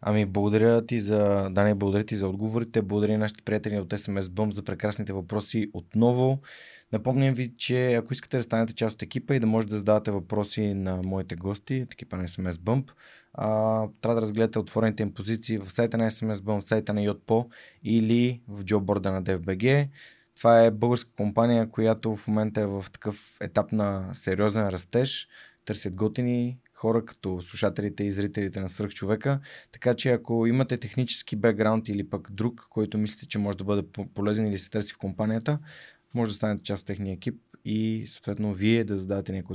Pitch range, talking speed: 100-120 Hz, 185 wpm